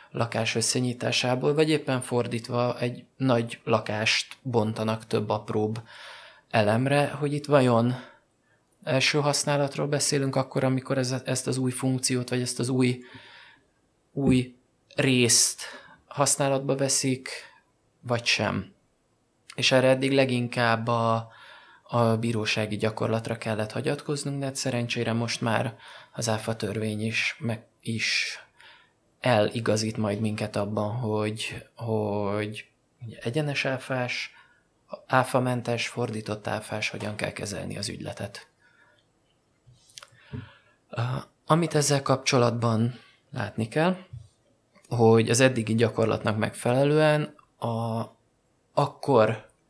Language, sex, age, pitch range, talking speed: Hungarian, male, 20-39, 110-130 Hz, 95 wpm